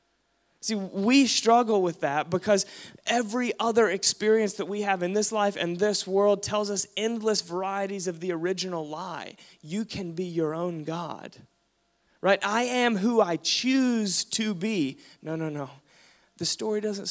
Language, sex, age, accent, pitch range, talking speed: English, male, 20-39, American, 160-210 Hz, 160 wpm